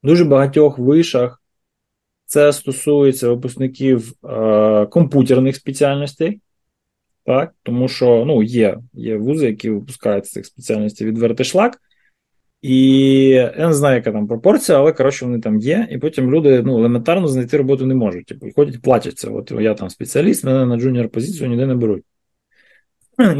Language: Ukrainian